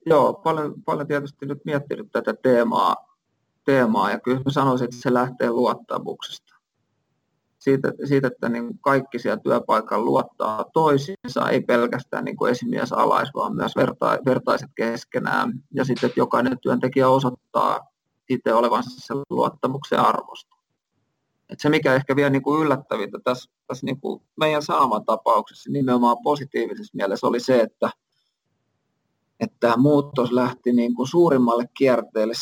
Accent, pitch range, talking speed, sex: native, 115-145 Hz, 135 wpm, male